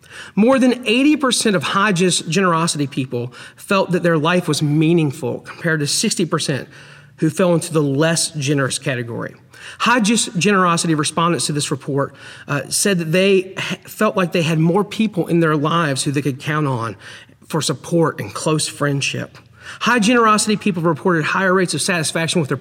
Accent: American